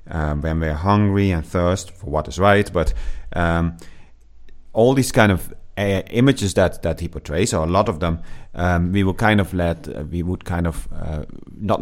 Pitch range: 85-105 Hz